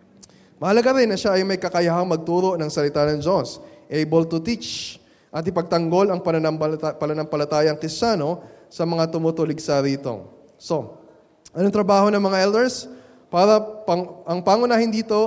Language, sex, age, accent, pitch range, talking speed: Filipino, male, 20-39, native, 145-190 Hz, 140 wpm